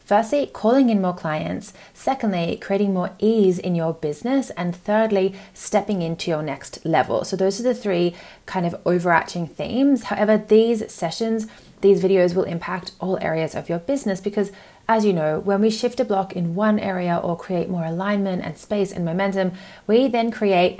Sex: female